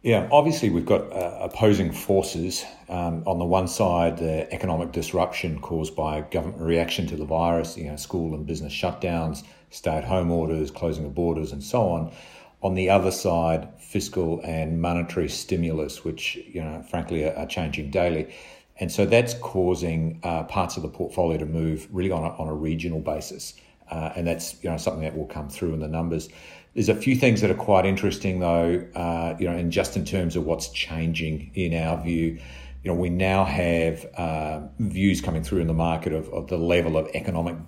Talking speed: 200 wpm